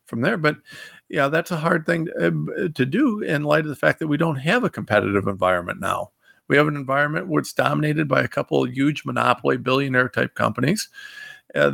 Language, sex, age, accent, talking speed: English, male, 50-69, American, 210 wpm